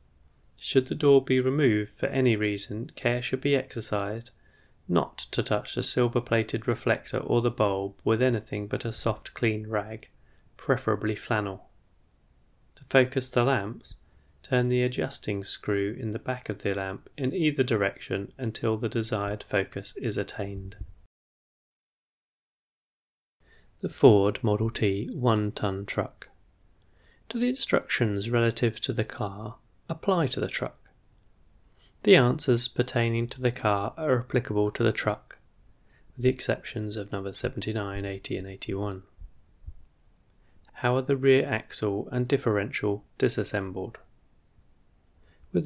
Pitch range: 100-125 Hz